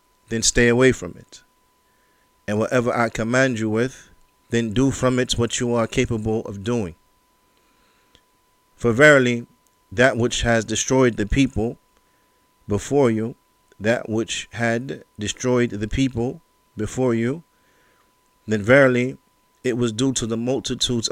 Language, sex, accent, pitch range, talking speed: English, male, American, 110-125 Hz, 135 wpm